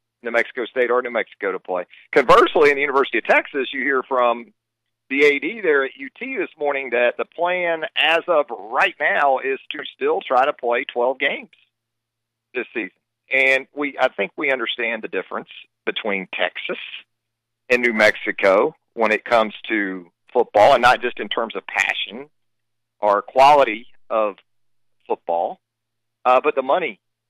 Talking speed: 165 wpm